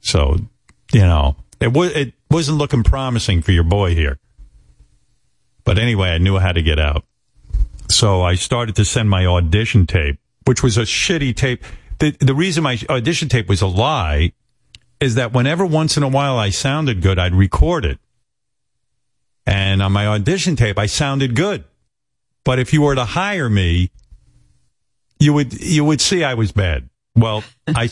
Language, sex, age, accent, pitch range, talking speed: English, male, 50-69, American, 90-135 Hz, 175 wpm